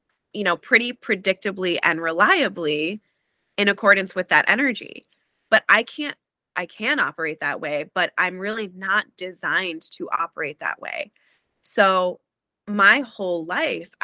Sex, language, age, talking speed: female, English, 20-39, 135 wpm